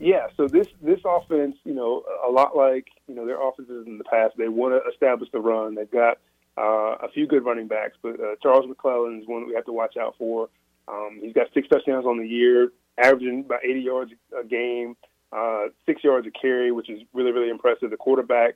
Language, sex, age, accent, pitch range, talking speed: English, male, 30-49, American, 115-130 Hz, 225 wpm